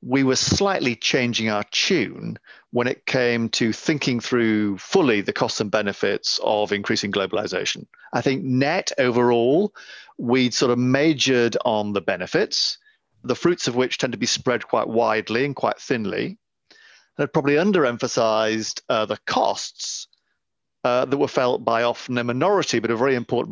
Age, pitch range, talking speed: 40-59, 110-130 Hz, 160 wpm